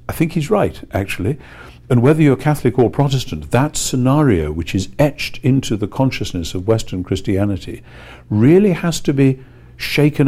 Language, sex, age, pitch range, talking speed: English, male, 60-79, 90-125 Hz, 160 wpm